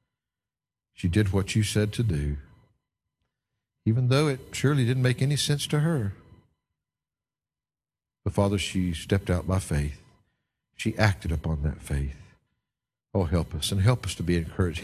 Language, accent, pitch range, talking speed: English, American, 95-145 Hz, 155 wpm